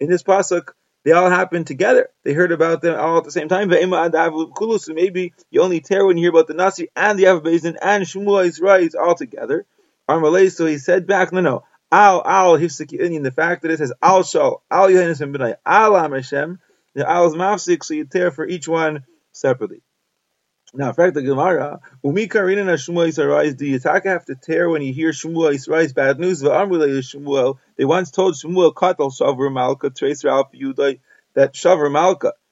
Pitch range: 155-185 Hz